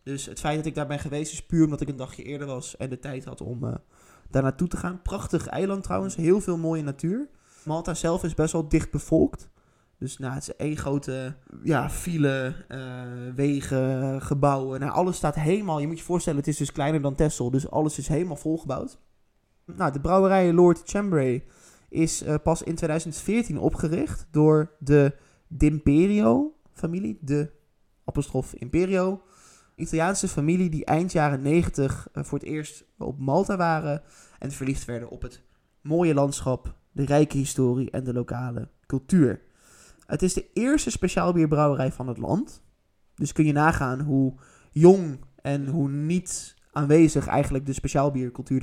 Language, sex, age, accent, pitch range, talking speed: Dutch, male, 20-39, Dutch, 135-165 Hz, 160 wpm